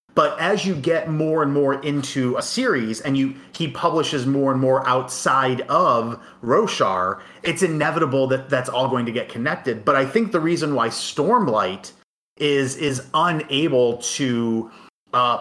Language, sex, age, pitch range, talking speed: English, male, 30-49, 125-150 Hz, 160 wpm